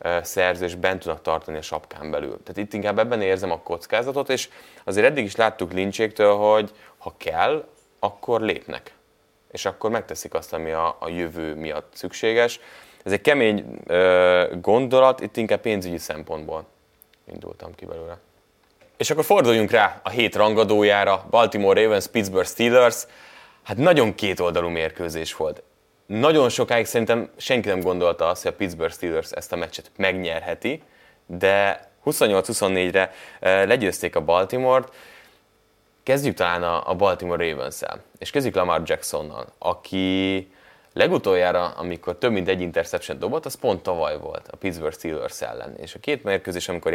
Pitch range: 85-115 Hz